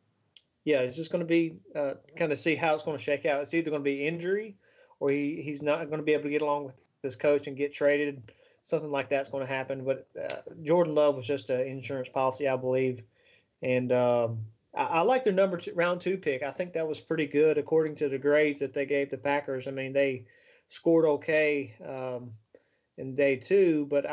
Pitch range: 135-155 Hz